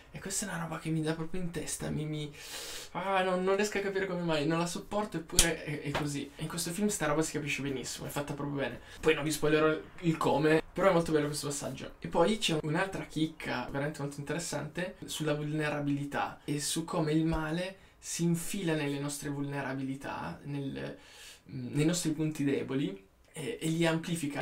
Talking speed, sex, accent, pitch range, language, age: 205 wpm, male, native, 140-160 Hz, Italian, 20-39